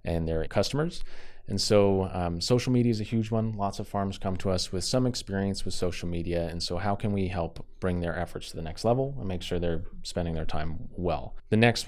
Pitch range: 85-105 Hz